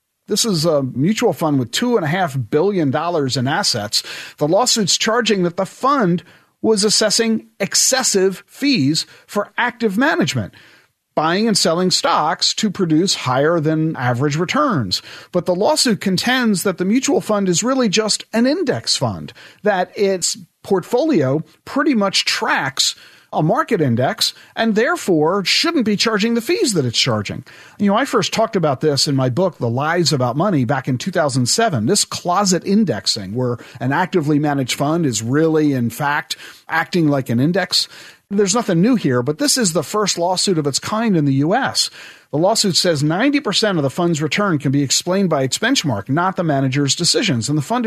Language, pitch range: English, 150-220 Hz